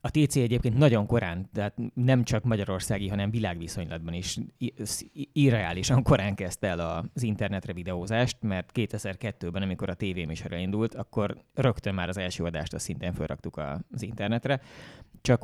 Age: 20-39